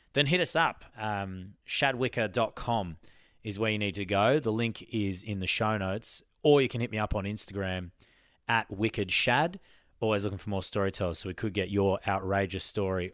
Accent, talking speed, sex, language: Australian, 190 wpm, male, English